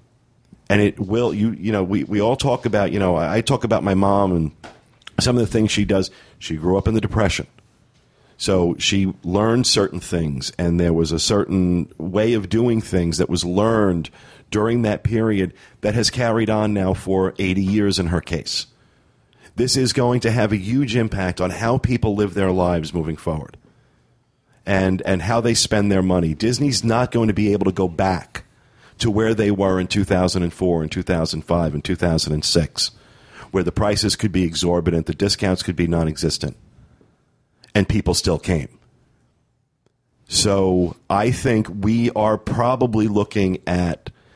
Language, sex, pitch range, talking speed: English, male, 90-115 Hz, 170 wpm